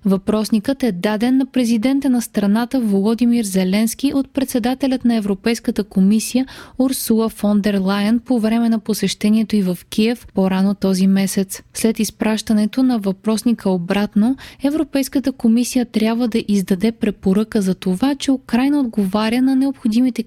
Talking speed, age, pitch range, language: 135 wpm, 20-39, 200-245 Hz, Bulgarian